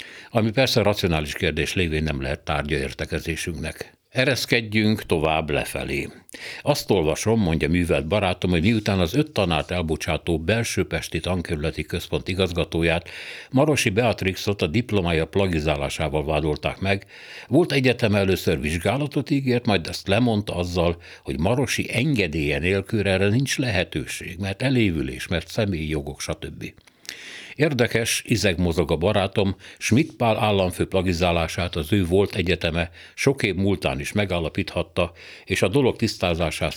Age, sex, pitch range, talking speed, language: 60-79, male, 80-110 Hz, 125 wpm, Hungarian